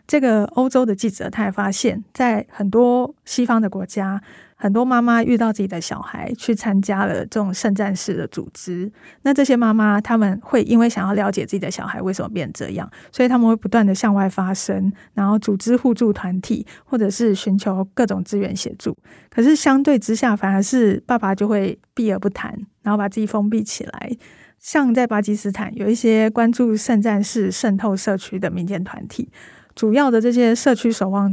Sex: female